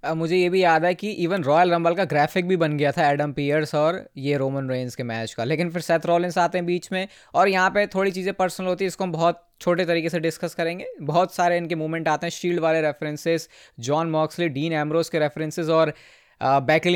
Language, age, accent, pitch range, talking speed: Hindi, 20-39, native, 150-180 Hz, 235 wpm